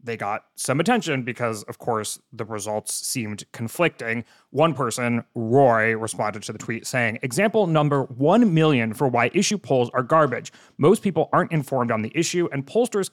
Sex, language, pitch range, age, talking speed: male, English, 120-155 Hz, 30-49, 175 wpm